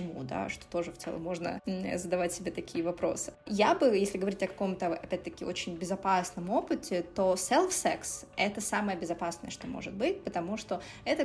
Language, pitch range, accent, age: Russian, 180-210 Hz, native, 20-39